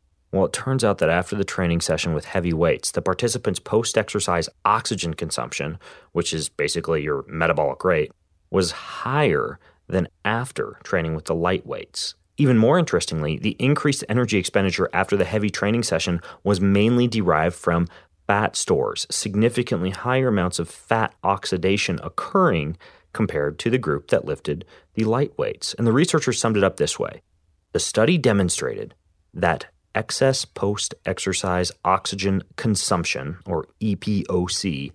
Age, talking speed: 30-49, 145 wpm